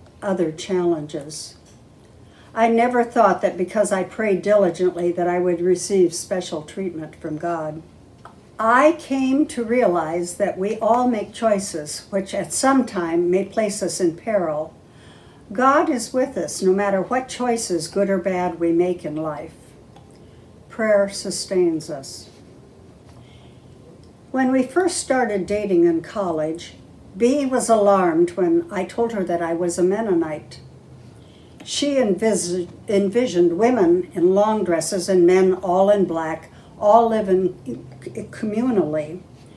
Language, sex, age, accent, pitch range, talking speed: English, female, 60-79, American, 170-215 Hz, 135 wpm